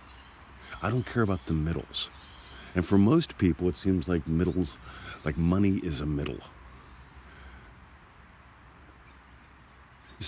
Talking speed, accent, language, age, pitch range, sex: 115 wpm, American, English, 40-59, 70-85 Hz, male